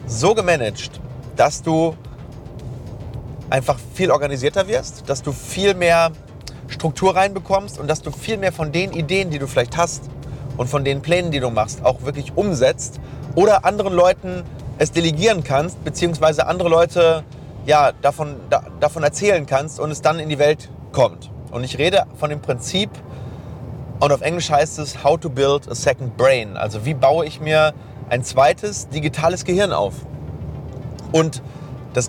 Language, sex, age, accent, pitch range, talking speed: German, male, 30-49, German, 130-155 Hz, 165 wpm